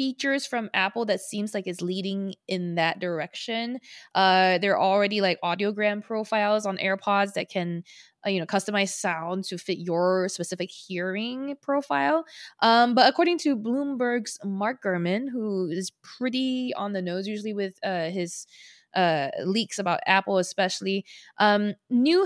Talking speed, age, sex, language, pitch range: 150 wpm, 20-39, female, English, 185-230 Hz